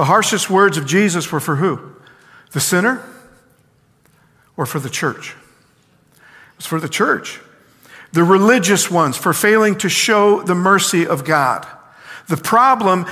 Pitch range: 160-205 Hz